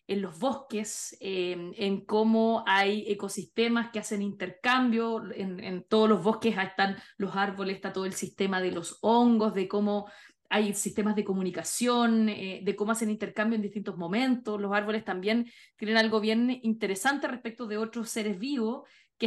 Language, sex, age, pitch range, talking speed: Spanish, female, 20-39, 205-235 Hz, 165 wpm